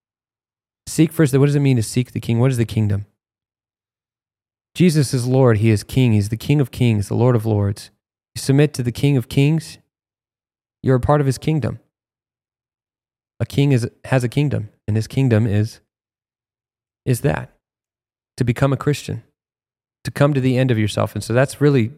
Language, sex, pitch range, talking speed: English, male, 110-130 Hz, 190 wpm